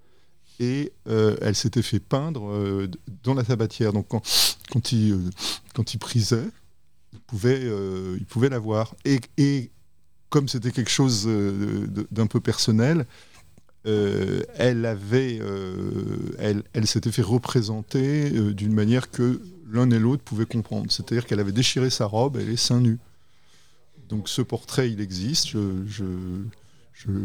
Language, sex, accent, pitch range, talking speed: French, male, French, 95-125 Hz, 160 wpm